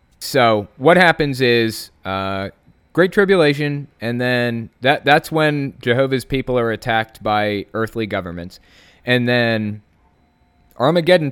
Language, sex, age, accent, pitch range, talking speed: English, male, 20-39, American, 95-130 Hz, 115 wpm